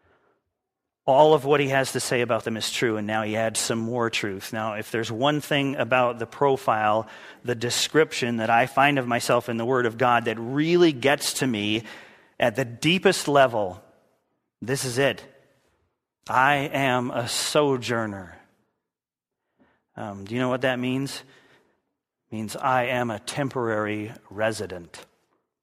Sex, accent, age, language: male, American, 40-59, English